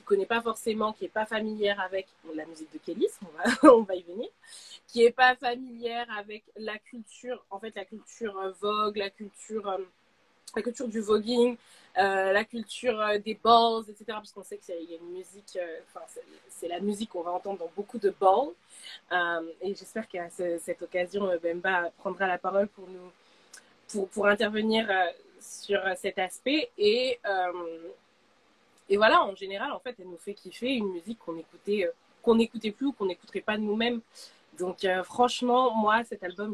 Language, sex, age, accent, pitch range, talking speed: French, female, 20-39, French, 190-235 Hz, 180 wpm